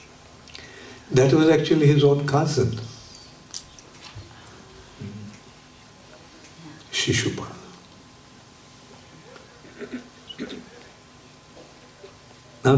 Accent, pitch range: Indian, 120-145 Hz